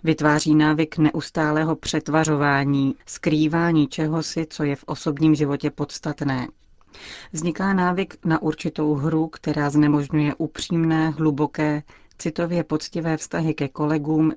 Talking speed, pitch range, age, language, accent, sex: 110 wpm, 150-175 Hz, 30-49, Czech, native, female